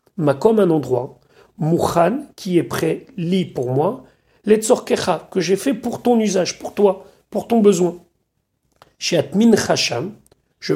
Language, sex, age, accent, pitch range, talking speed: French, male, 40-59, French, 160-210 Hz, 150 wpm